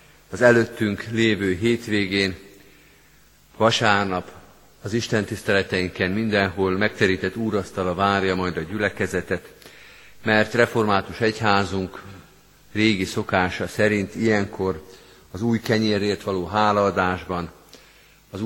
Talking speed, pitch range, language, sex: 90 wpm, 90-105 Hz, Hungarian, male